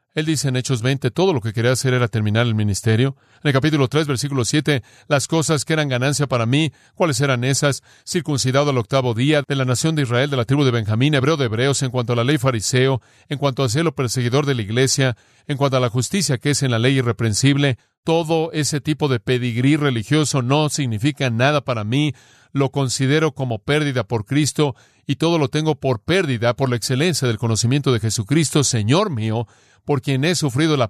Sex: male